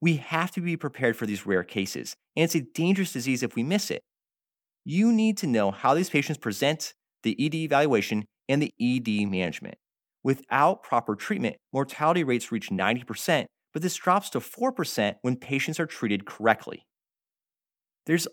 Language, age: English, 30-49